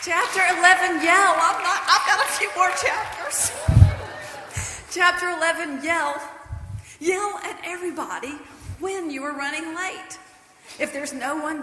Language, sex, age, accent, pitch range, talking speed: English, female, 40-59, American, 245-345 Hz, 135 wpm